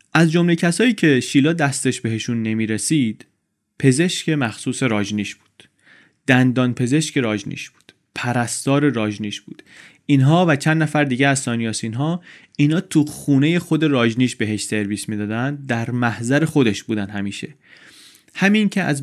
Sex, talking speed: male, 140 wpm